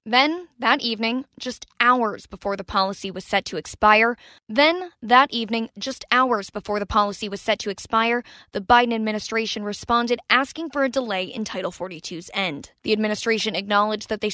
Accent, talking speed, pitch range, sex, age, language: American, 170 wpm, 205-240 Hz, female, 10-29, English